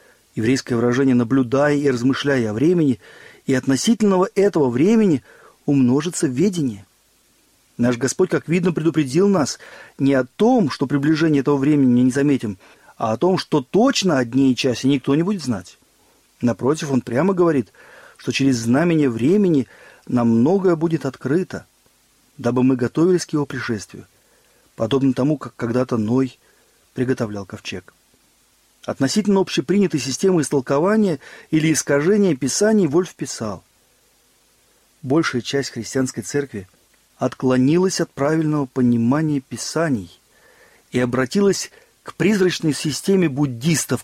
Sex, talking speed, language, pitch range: male, 120 wpm, Russian, 130-170 Hz